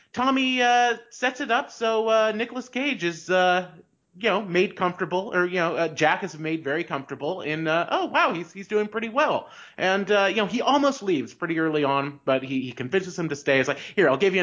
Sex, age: male, 30-49